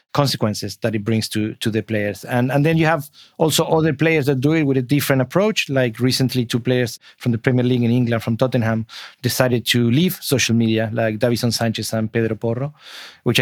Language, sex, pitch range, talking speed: English, male, 115-135 Hz, 210 wpm